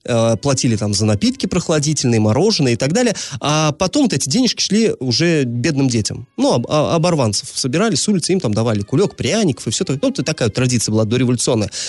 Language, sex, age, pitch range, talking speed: Russian, male, 30-49, 120-175 Hz, 180 wpm